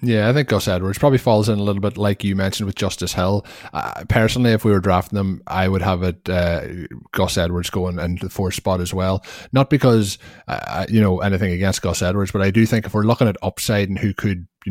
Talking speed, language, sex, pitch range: 245 wpm, English, male, 90-100 Hz